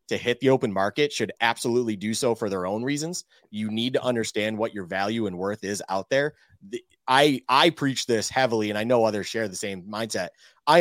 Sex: male